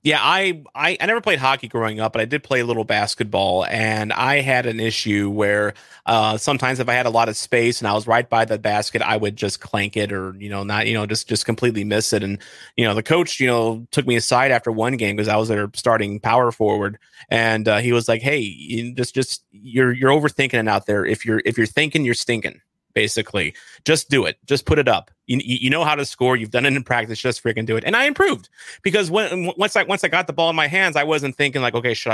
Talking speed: 260 wpm